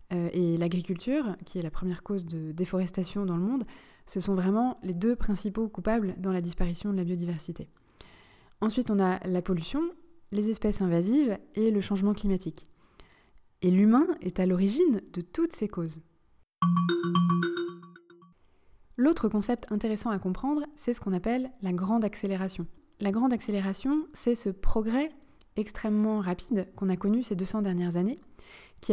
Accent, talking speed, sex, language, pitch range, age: French, 155 wpm, female, French, 180-230 Hz, 20-39